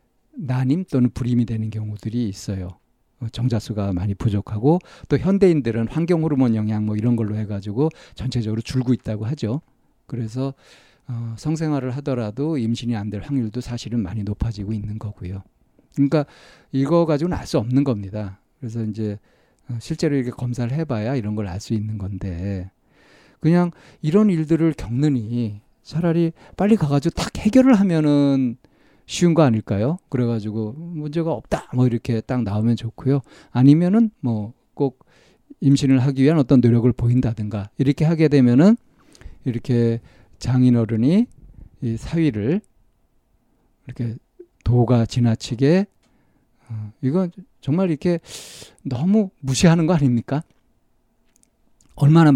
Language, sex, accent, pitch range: Korean, male, native, 110-150 Hz